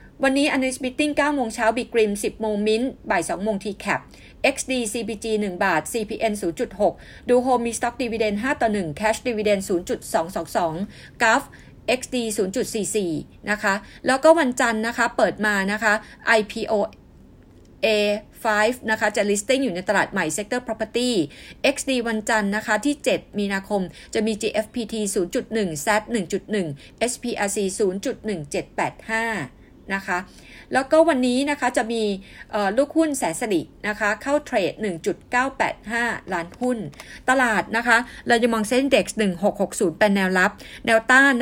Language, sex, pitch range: Thai, female, 195-240 Hz